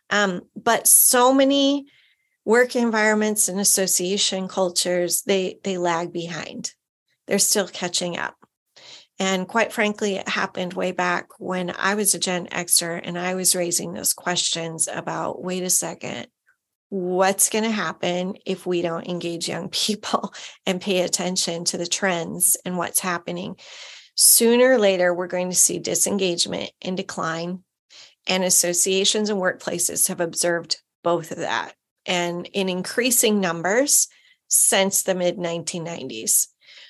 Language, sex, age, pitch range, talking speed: English, female, 30-49, 180-210 Hz, 140 wpm